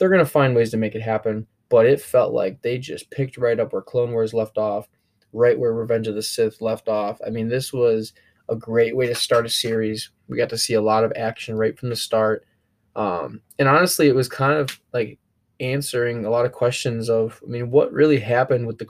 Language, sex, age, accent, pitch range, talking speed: English, male, 10-29, American, 110-125 Hz, 240 wpm